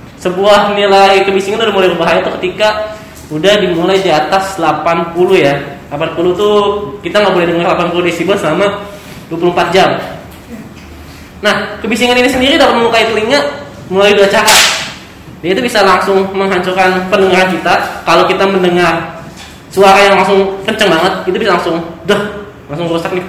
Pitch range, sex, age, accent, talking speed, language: 170-205 Hz, male, 10-29, native, 145 wpm, Indonesian